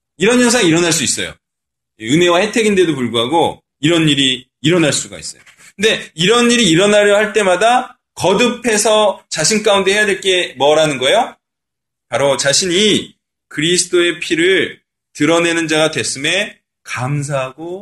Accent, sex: native, male